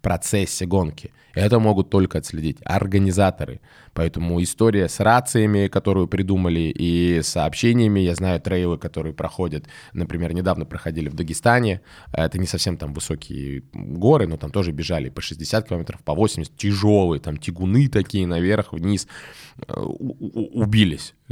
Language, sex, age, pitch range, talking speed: Russian, male, 20-39, 85-105 Hz, 130 wpm